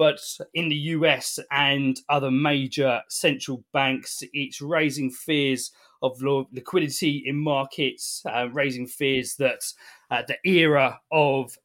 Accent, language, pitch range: British, English, 135-170 Hz